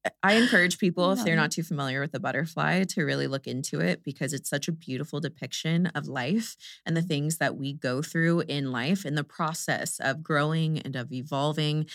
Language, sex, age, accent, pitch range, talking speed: English, female, 30-49, American, 140-160 Hz, 205 wpm